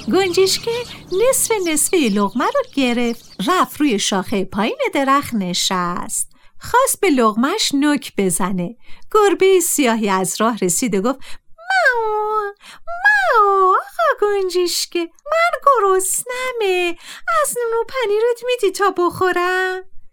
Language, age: Persian, 50-69